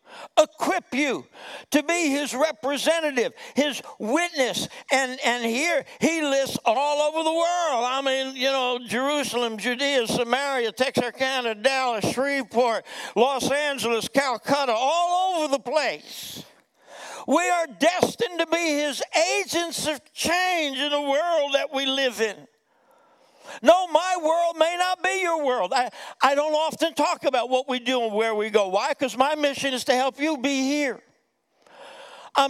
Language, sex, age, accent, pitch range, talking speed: English, male, 60-79, American, 235-300 Hz, 150 wpm